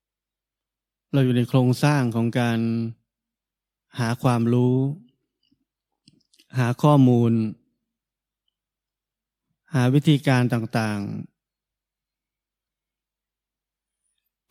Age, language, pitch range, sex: 20-39, Thai, 120-140 Hz, male